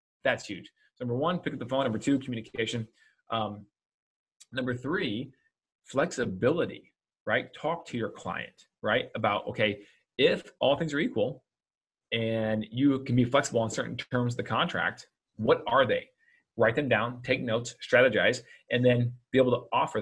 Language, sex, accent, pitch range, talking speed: English, male, American, 110-130 Hz, 165 wpm